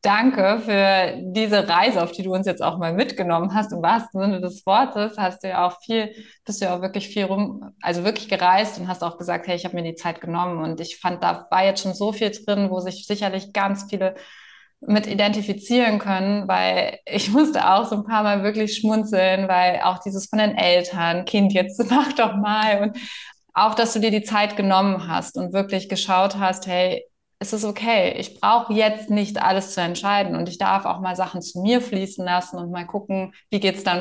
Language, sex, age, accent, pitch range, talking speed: German, female, 20-39, German, 185-215 Hz, 220 wpm